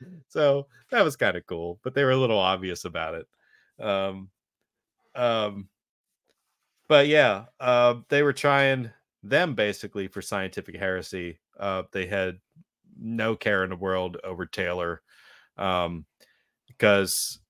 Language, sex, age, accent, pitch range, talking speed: English, male, 30-49, American, 95-115 Hz, 135 wpm